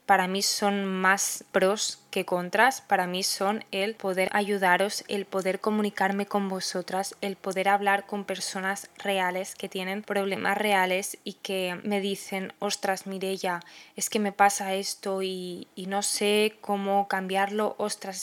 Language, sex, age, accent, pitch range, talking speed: Spanish, female, 10-29, Spanish, 190-210 Hz, 150 wpm